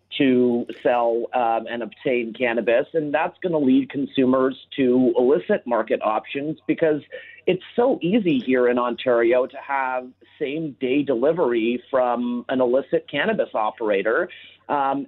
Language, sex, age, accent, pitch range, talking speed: English, male, 40-59, American, 125-155 Hz, 135 wpm